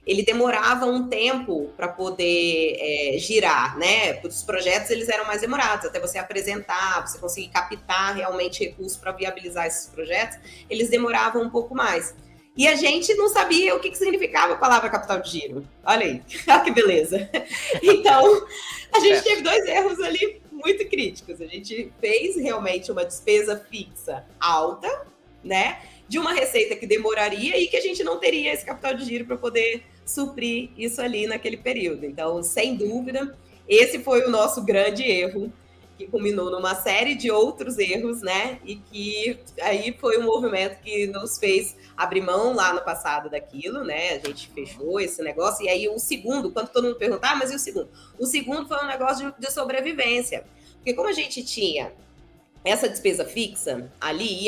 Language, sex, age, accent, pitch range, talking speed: Portuguese, female, 20-39, Brazilian, 200-295 Hz, 170 wpm